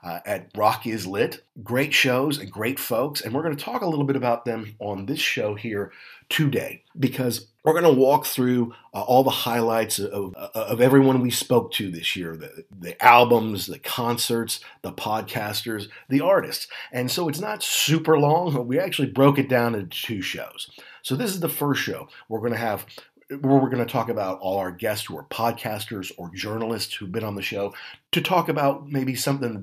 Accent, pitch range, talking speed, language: American, 110-140 Hz, 210 wpm, English